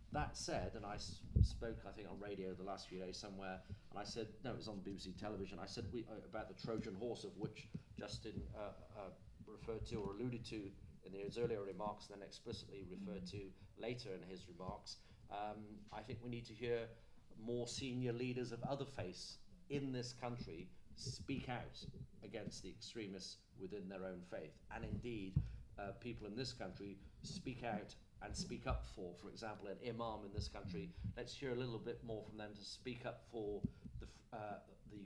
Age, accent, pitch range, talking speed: 40-59, British, 100-115 Hz, 195 wpm